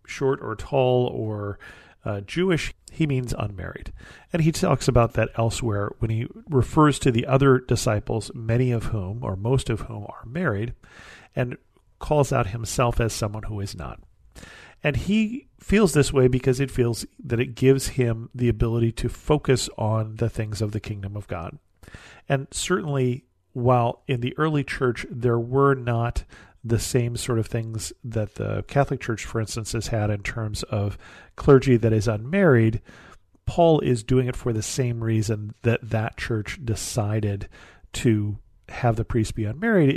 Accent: American